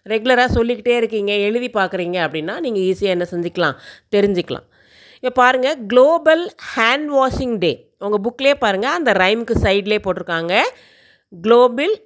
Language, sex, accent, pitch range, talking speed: Tamil, female, native, 190-265 Hz, 125 wpm